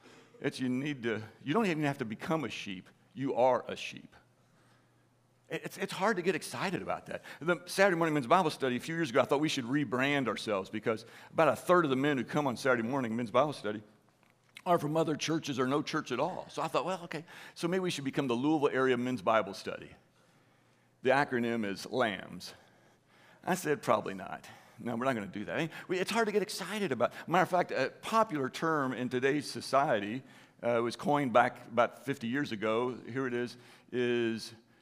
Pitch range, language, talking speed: 115-160 Hz, English, 210 wpm